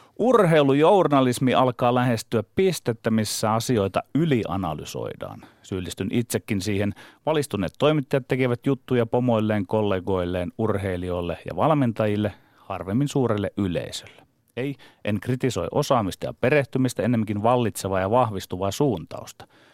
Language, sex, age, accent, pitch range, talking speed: Finnish, male, 30-49, native, 100-140 Hz, 100 wpm